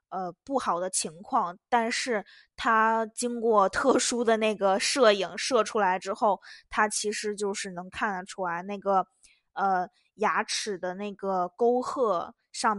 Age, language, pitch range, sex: 20-39, Chinese, 195-240 Hz, female